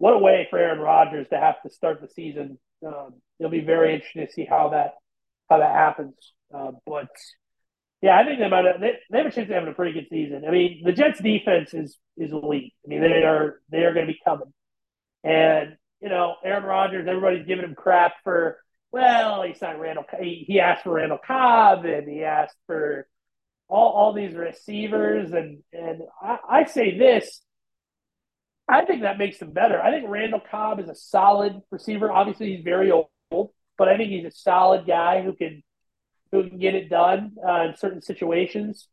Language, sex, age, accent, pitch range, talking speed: English, male, 40-59, American, 160-200 Hz, 200 wpm